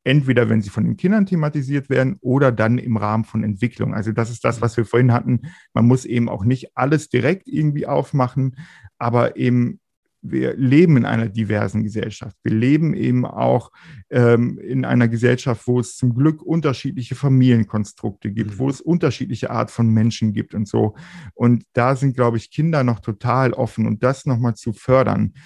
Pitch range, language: 120-155 Hz, German